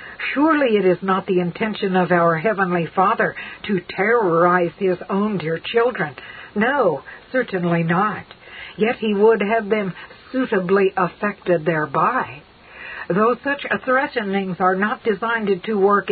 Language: English